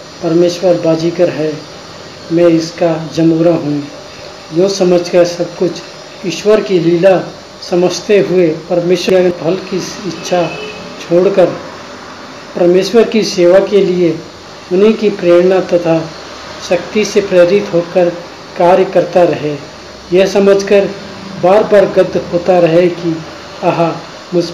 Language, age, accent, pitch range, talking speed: Hindi, 40-59, native, 165-185 Hz, 115 wpm